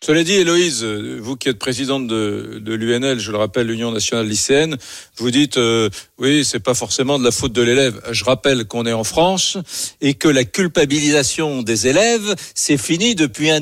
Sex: male